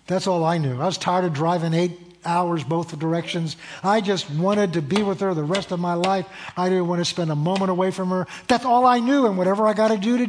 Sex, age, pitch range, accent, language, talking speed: male, 50-69, 165-210 Hz, American, English, 270 wpm